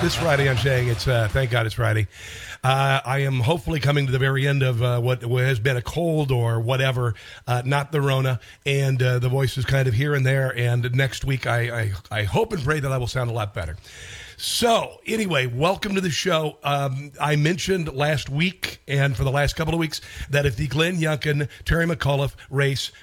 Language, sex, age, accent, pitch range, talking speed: English, male, 50-69, American, 125-160 Hz, 215 wpm